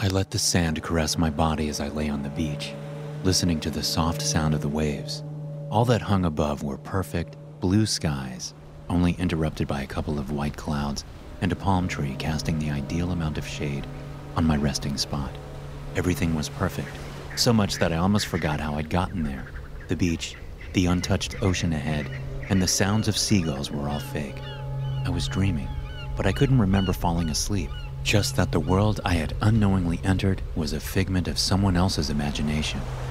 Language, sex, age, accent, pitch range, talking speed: English, male, 30-49, American, 75-105 Hz, 185 wpm